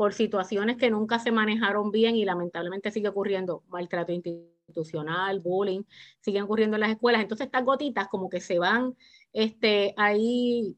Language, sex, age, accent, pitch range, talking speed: English, female, 30-49, American, 185-225 Hz, 155 wpm